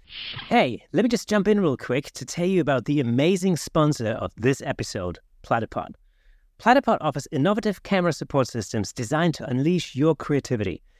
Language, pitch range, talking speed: English, 125-175 Hz, 165 wpm